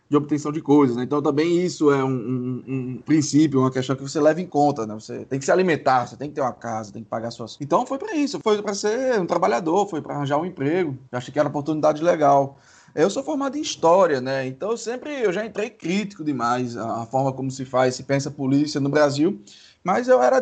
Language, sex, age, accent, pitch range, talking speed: Portuguese, male, 20-39, Brazilian, 135-175 Hz, 245 wpm